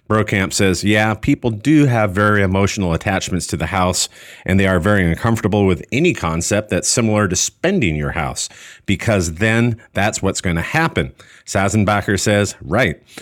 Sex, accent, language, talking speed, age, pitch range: male, American, English, 165 wpm, 40-59, 100-140 Hz